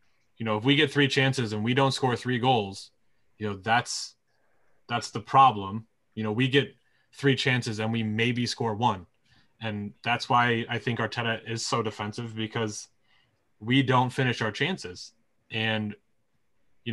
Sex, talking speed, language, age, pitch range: male, 165 wpm, English, 20-39, 110-130 Hz